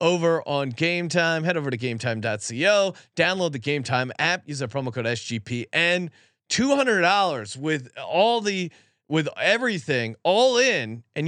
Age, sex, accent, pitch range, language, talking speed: 30-49, male, American, 130-170 Hz, English, 150 wpm